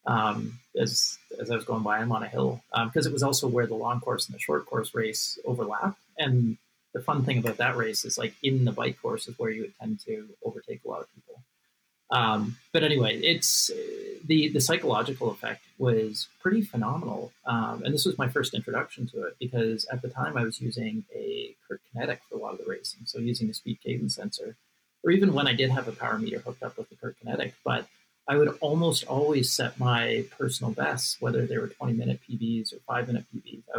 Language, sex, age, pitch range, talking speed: English, male, 40-59, 115-160 Hz, 225 wpm